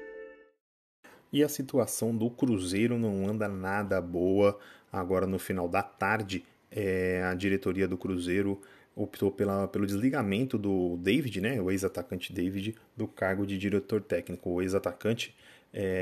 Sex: male